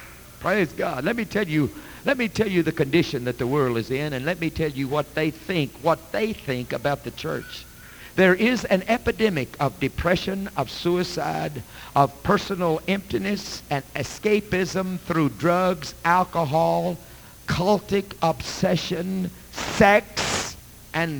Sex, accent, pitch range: male, American, 150-195 Hz